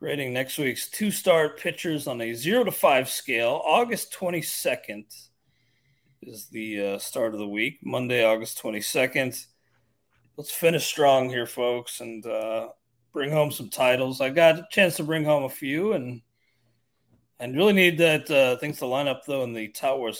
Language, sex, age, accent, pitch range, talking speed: English, male, 40-59, American, 115-150 Hz, 170 wpm